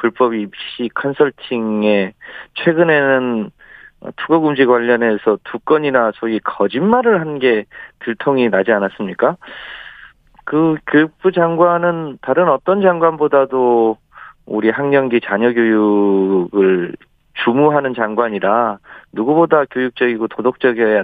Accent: native